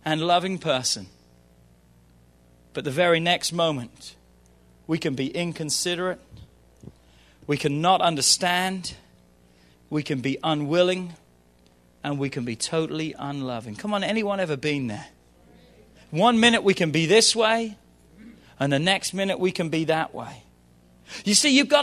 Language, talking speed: English, 145 wpm